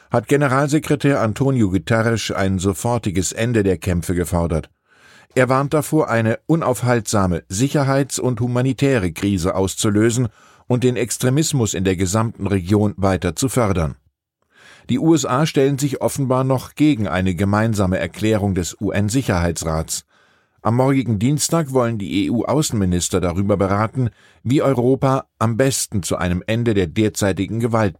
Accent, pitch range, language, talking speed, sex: German, 95-125 Hz, German, 130 wpm, male